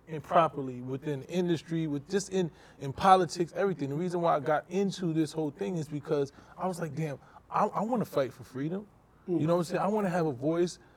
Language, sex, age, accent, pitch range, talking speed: English, male, 20-39, American, 155-185 Hz, 230 wpm